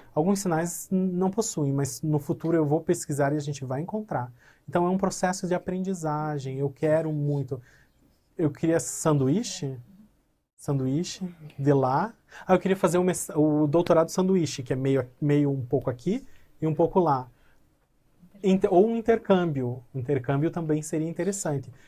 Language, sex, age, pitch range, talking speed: Portuguese, male, 30-49, 140-175 Hz, 150 wpm